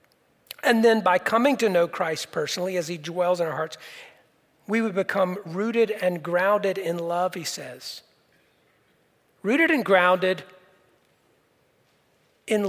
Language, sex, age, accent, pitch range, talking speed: English, male, 40-59, American, 170-205 Hz, 130 wpm